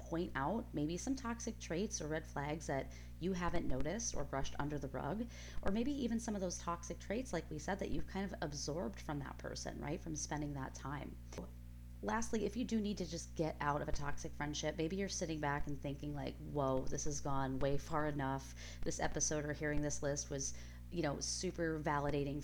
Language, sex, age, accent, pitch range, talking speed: English, female, 30-49, American, 135-175 Hz, 215 wpm